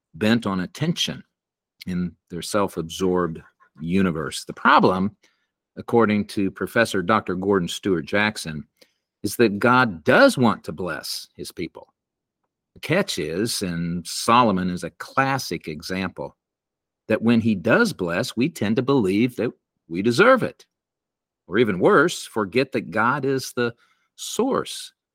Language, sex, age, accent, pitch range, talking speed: English, male, 50-69, American, 90-120 Hz, 135 wpm